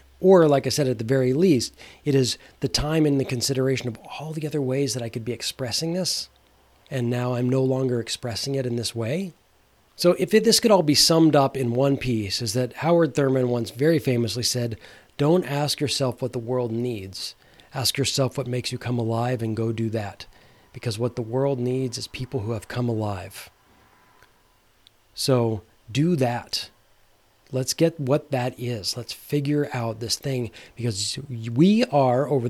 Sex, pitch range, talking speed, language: male, 115-140 Hz, 185 wpm, English